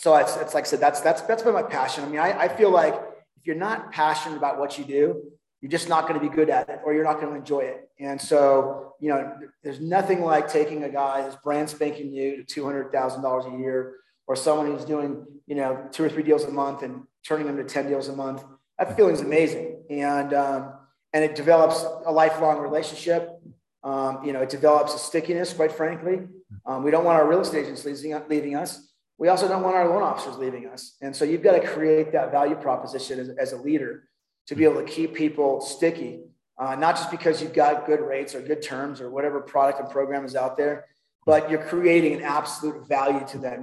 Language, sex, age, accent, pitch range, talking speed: English, male, 30-49, American, 140-160 Hz, 230 wpm